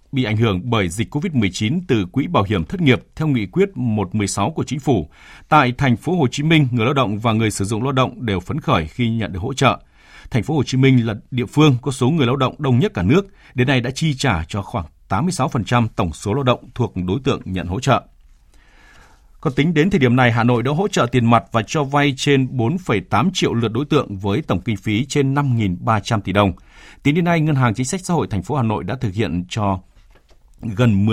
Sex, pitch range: male, 100-135 Hz